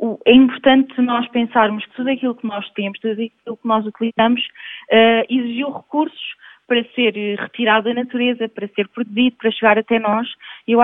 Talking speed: 165 wpm